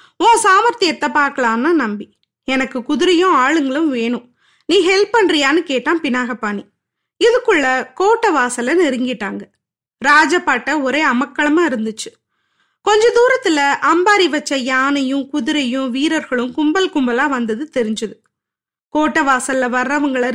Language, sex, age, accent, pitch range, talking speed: Tamil, female, 20-39, native, 260-345 Hz, 100 wpm